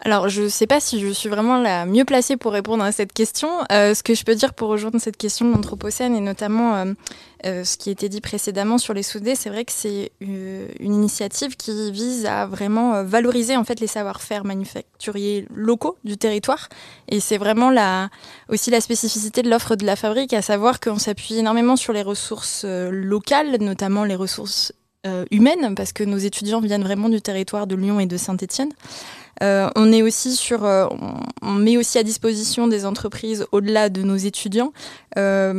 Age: 20-39